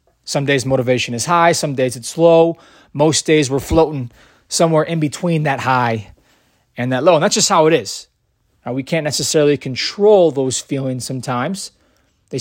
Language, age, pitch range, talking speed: English, 20-39, 125-160 Hz, 175 wpm